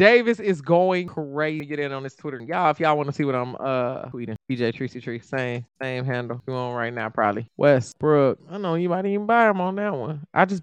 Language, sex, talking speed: English, male, 250 wpm